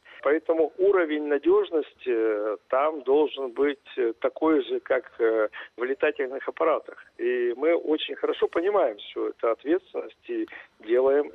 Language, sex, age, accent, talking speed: Russian, male, 50-69, native, 115 wpm